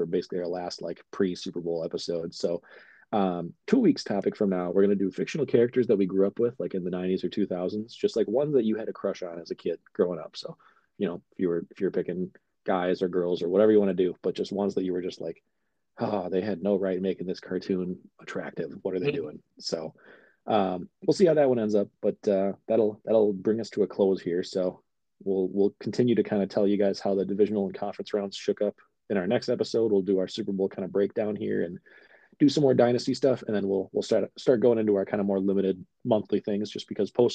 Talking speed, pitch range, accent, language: 250 wpm, 95-110 Hz, American, English